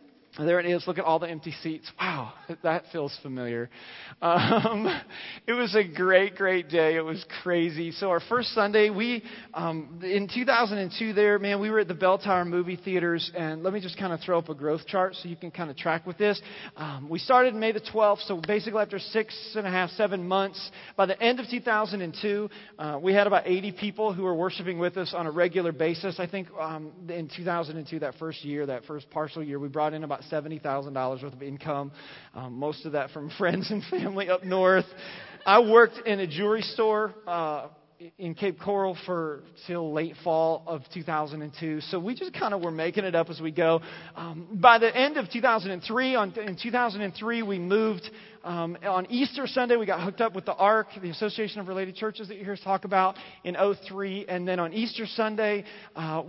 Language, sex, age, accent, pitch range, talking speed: English, male, 30-49, American, 165-210 Hz, 205 wpm